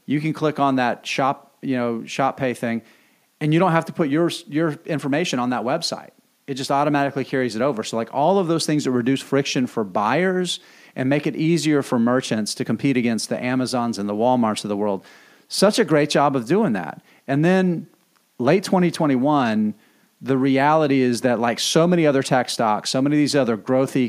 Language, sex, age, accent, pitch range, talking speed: English, male, 40-59, American, 120-150 Hz, 210 wpm